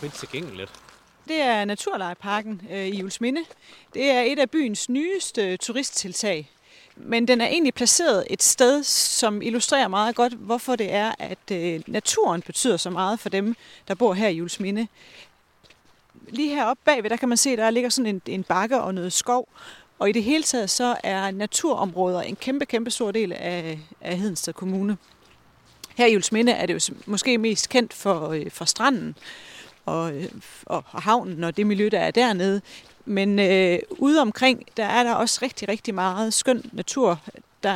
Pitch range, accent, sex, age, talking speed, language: 195-245 Hz, native, female, 30-49, 165 wpm, Danish